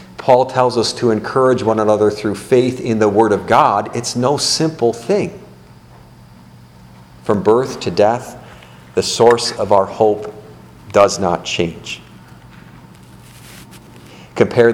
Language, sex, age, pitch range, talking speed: English, male, 50-69, 85-125 Hz, 125 wpm